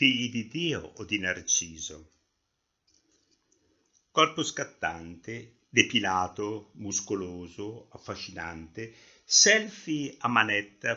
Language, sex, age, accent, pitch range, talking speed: Italian, male, 60-79, native, 90-115 Hz, 70 wpm